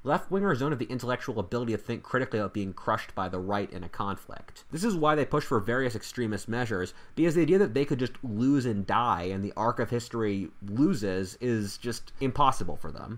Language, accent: English, American